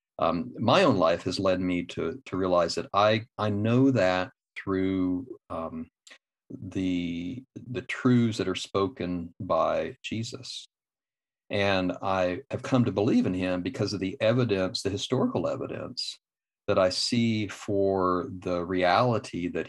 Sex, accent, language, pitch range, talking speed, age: male, American, English, 90-125 Hz, 145 wpm, 50-69